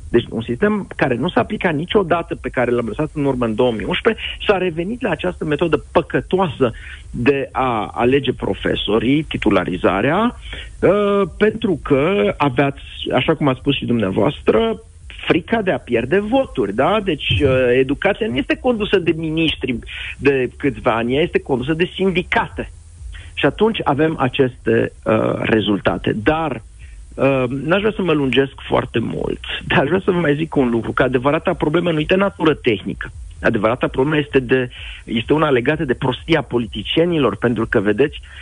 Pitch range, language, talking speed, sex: 120-170 Hz, Romanian, 155 wpm, male